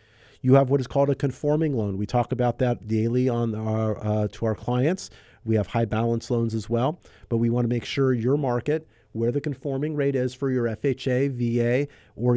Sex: male